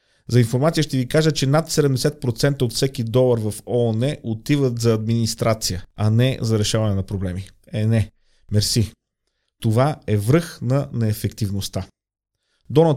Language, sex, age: Bulgarian, male, 30-49